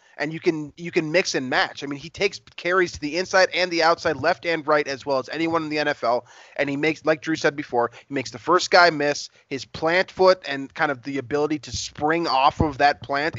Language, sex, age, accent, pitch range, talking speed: English, male, 20-39, American, 140-185 Hz, 250 wpm